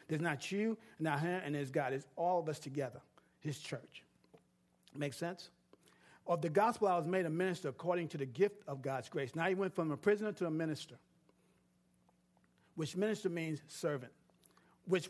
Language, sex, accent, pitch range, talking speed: English, male, American, 155-215 Hz, 185 wpm